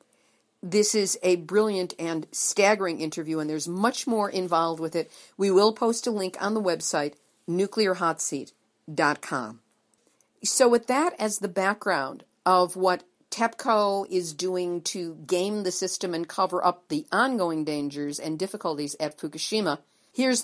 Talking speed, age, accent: 145 wpm, 50-69, American